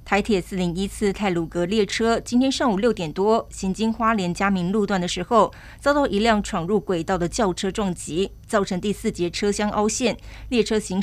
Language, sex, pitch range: Chinese, female, 180-225 Hz